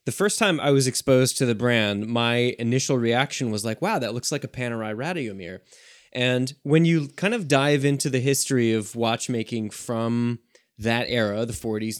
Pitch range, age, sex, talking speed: 110-130 Hz, 20-39, male, 185 wpm